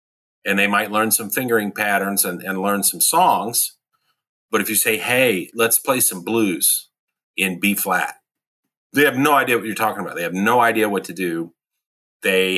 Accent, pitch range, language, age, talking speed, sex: American, 95-115 Hz, English, 40-59, 190 wpm, male